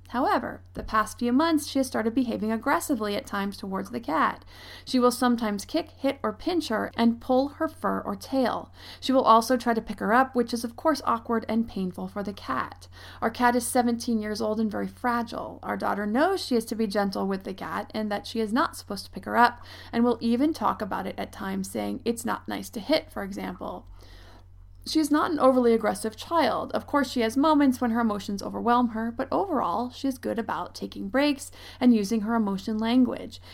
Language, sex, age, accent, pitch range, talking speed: English, female, 30-49, American, 205-260 Hz, 220 wpm